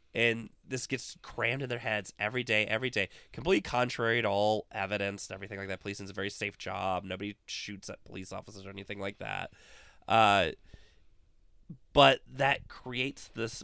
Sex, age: male, 20-39